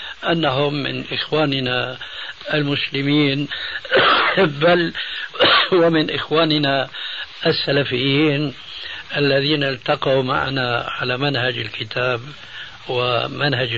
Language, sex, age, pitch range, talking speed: Arabic, male, 60-79, 135-155 Hz, 65 wpm